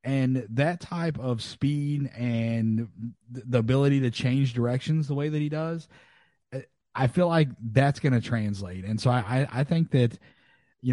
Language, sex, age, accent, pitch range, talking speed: English, male, 30-49, American, 115-145 Hz, 175 wpm